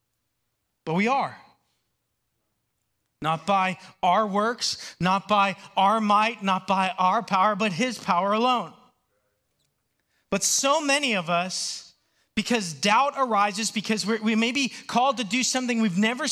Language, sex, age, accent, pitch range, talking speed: English, male, 30-49, American, 200-250 Hz, 140 wpm